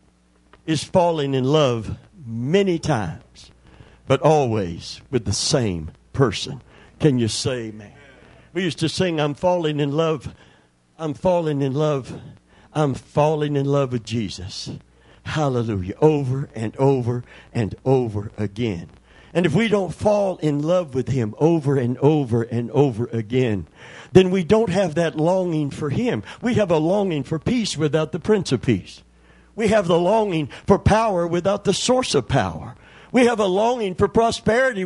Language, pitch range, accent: English, 120-185 Hz, American